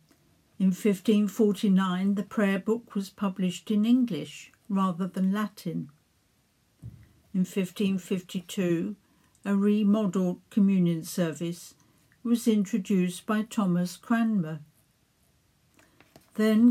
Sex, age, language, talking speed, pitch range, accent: female, 60-79, English, 85 wpm, 180-215 Hz, British